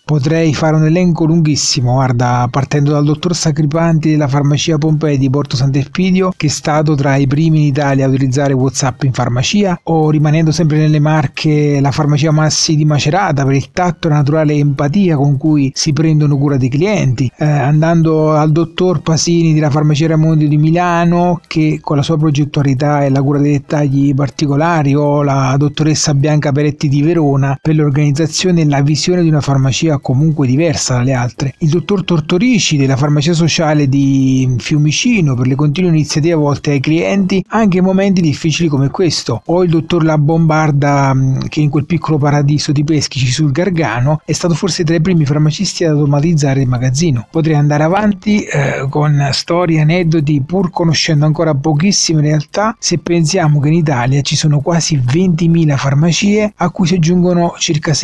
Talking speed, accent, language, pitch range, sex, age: 170 wpm, native, Italian, 145-165 Hz, male, 30-49